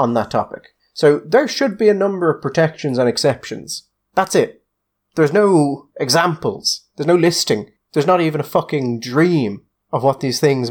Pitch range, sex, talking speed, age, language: 125-195 Hz, male, 175 wpm, 30-49, English